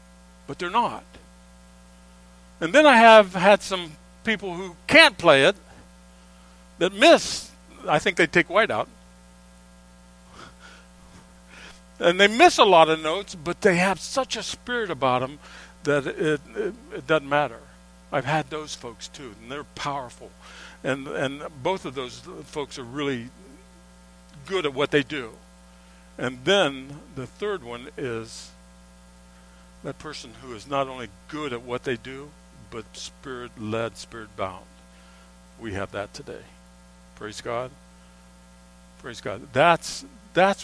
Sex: male